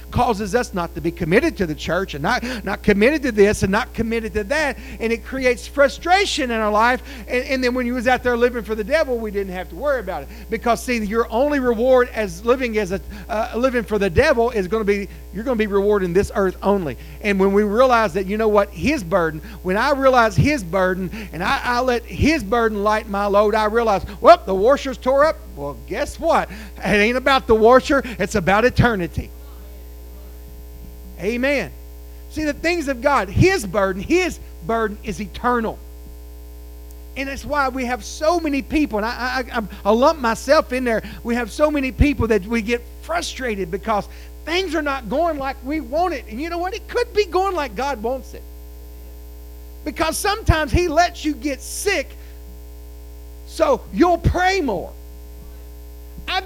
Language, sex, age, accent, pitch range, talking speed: English, male, 40-59, American, 185-275 Hz, 195 wpm